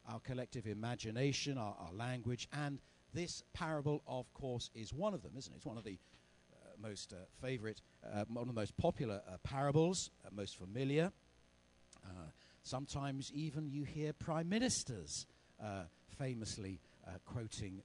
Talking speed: 155 wpm